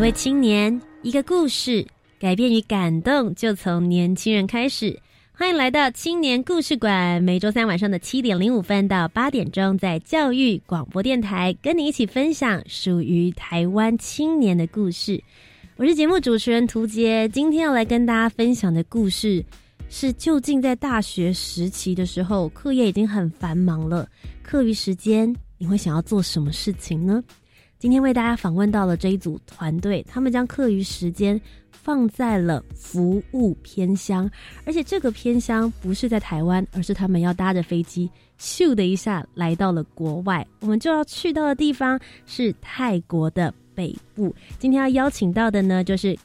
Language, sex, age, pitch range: Chinese, female, 20-39, 180-250 Hz